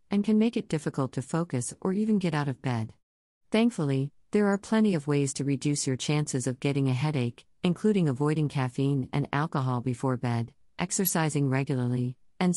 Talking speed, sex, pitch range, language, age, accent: 170 wpm, female, 130-165 Hz, English, 50-69, American